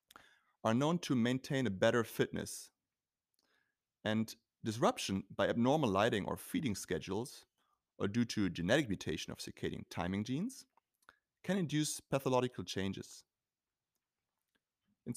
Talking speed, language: 115 wpm, English